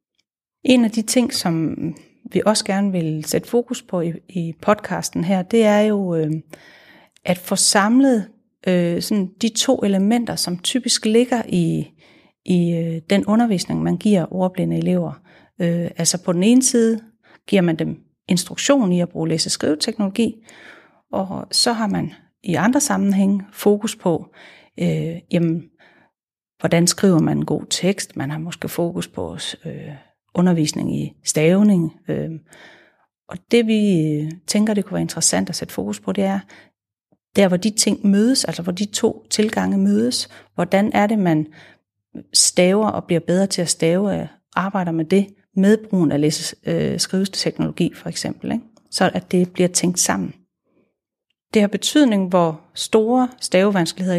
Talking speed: 155 wpm